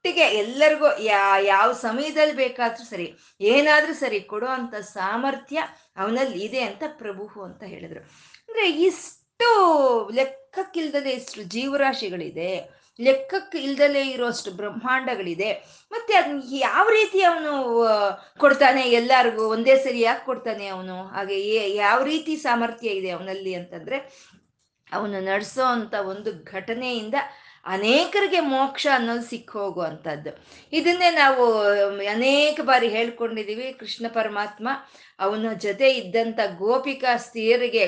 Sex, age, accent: female, 20-39, native